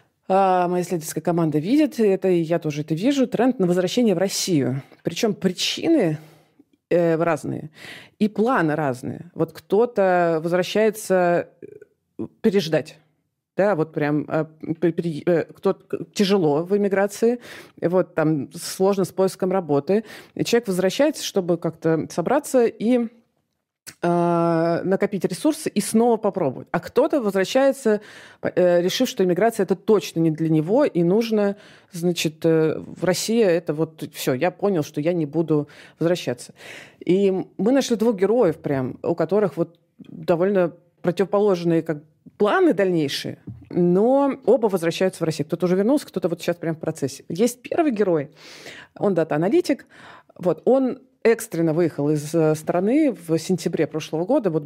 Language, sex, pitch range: Russian, female, 160-205 Hz